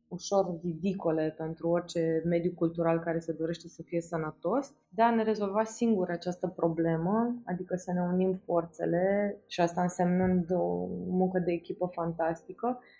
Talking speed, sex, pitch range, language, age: 150 wpm, female, 170-195 Hz, Romanian, 20-39